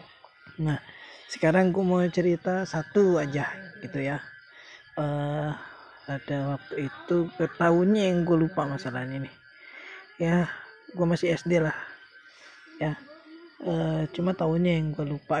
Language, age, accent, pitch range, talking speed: Indonesian, 20-39, native, 150-205 Hz, 120 wpm